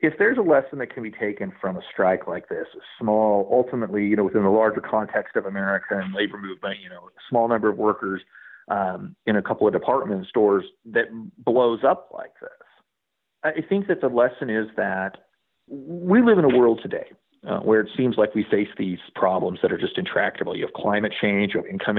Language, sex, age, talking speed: English, male, 40-59, 215 wpm